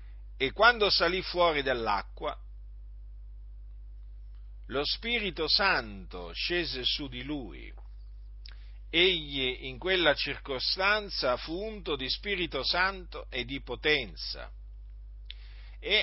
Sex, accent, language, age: male, native, Italian, 50-69